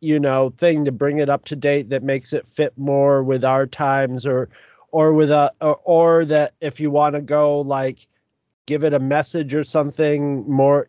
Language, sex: English, male